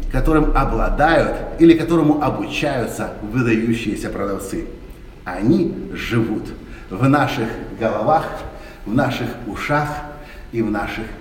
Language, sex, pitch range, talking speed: Russian, male, 110-150 Hz, 95 wpm